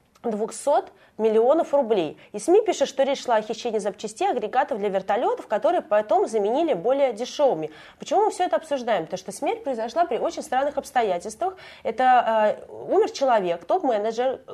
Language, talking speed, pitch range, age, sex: Russian, 155 wpm, 200-270 Hz, 20-39, female